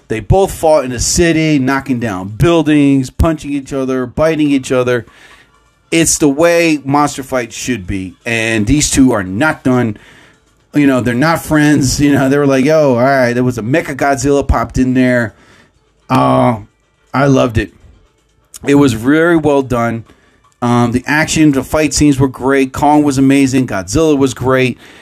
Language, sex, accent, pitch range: English, male, American, 125-155 Hz